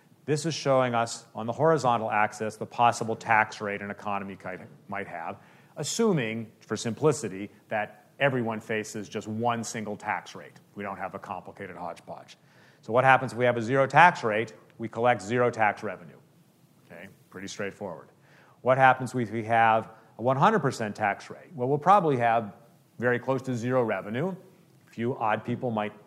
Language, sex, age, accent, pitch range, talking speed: English, male, 40-59, American, 110-140 Hz, 170 wpm